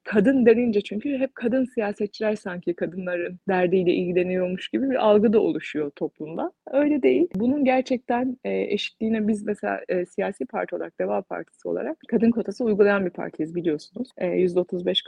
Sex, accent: female, native